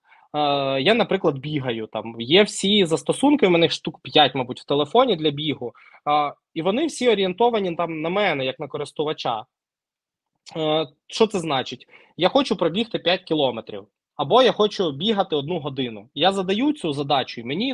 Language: Ukrainian